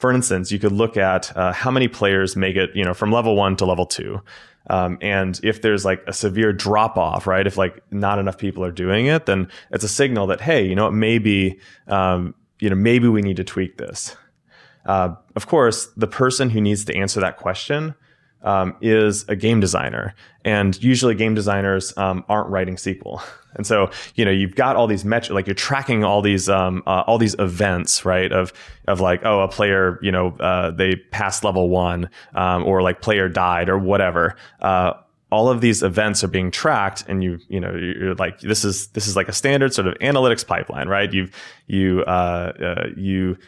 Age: 20-39